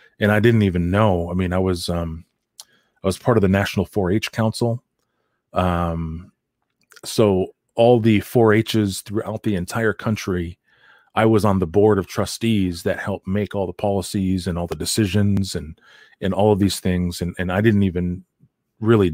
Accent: American